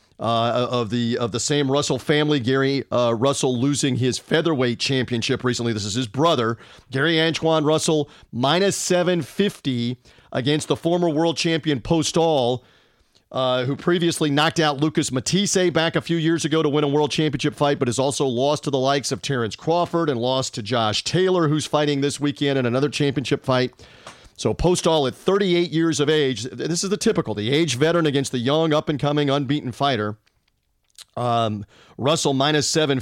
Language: English